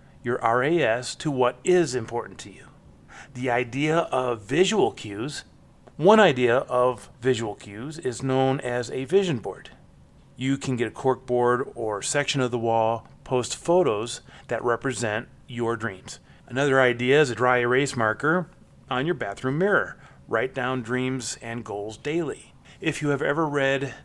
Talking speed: 155 wpm